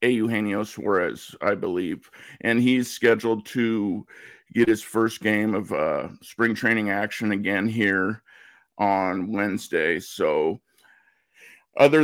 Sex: male